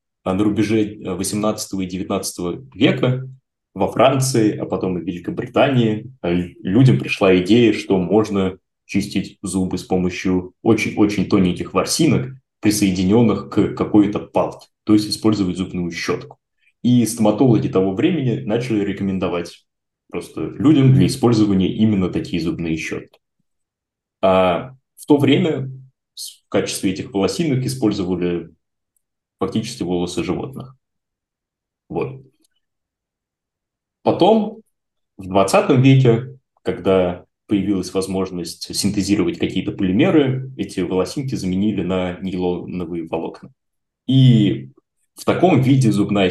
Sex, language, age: male, Russian, 20-39